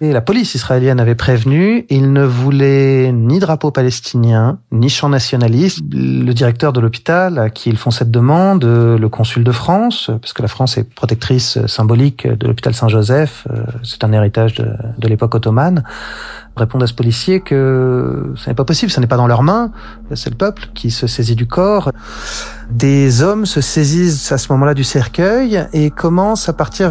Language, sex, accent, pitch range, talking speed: French, male, French, 115-145 Hz, 185 wpm